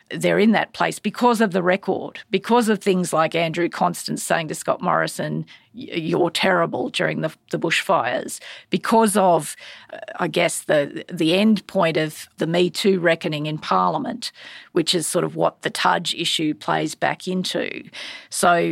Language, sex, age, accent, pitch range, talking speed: English, female, 40-59, Australian, 165-205 Hz, 170 wpm